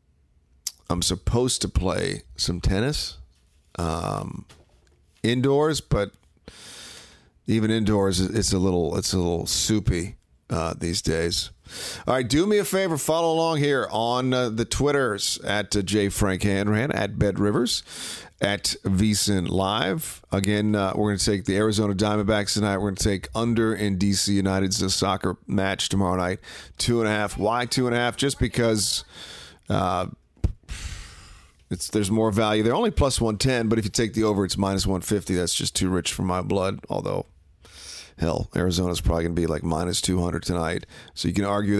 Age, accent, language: 40-59, American, English